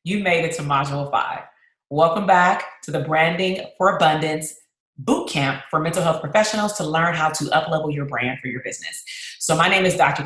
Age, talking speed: 30-49, 195 wpm